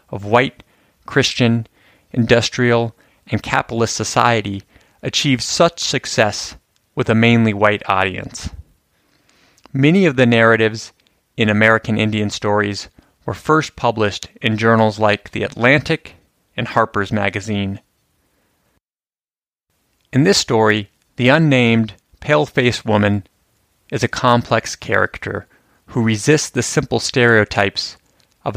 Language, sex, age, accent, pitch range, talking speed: English, male, 30-49, American, 105-125 Hz, 105 wpm